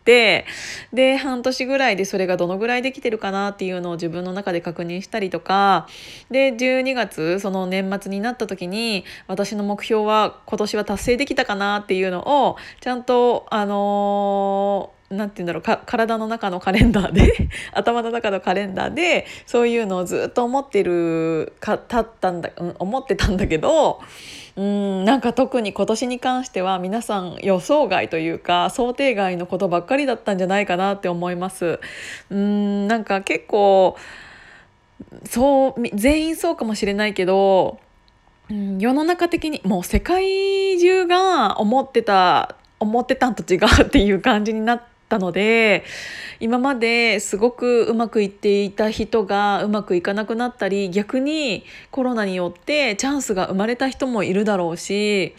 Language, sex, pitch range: Japanese, female, 195-250 Hz